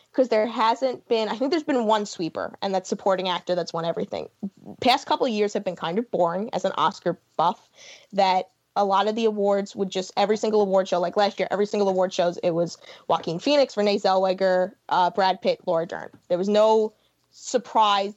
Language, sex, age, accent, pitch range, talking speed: English, female, 20-39, American, 185-225 Hz, 210 wpm